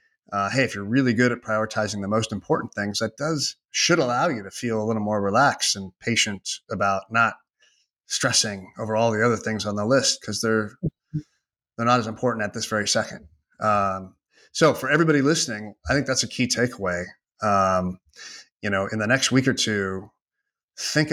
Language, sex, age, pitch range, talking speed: English, male, 30-49, 100-125 Hz, 190 wpm